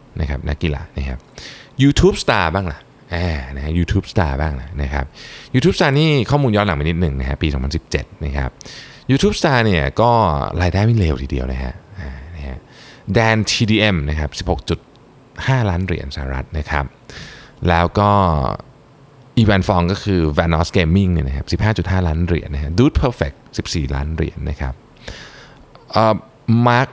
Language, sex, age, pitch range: Thai, male, 20-39, 75-110 Hz